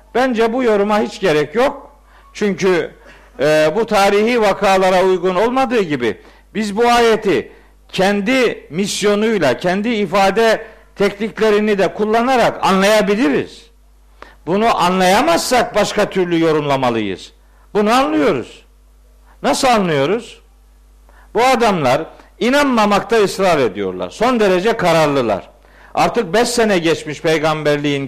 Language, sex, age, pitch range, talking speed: Turkish, male, 50-69, 185-235 Hz, 100 wpm